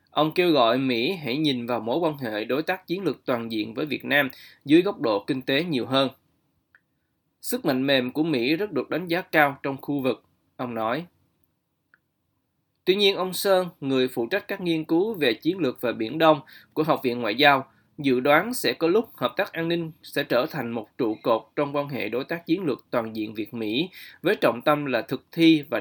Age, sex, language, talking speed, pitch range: 20-39, male, Vietnamese, 220 wpm, 130-170 Hz